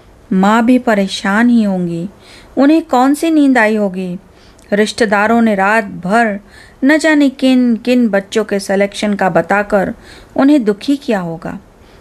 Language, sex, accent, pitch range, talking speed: Hindi, female, native, 205-275 Hz, 140 wpm